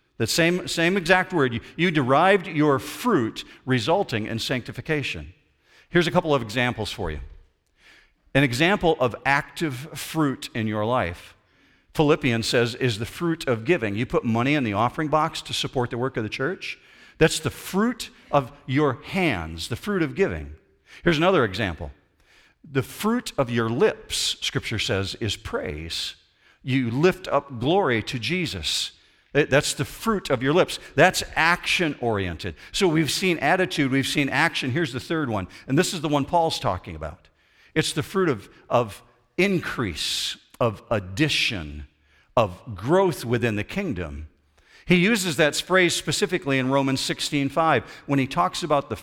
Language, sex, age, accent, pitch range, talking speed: English, male, 50-69, American, 115-165 Hz, 160 wpm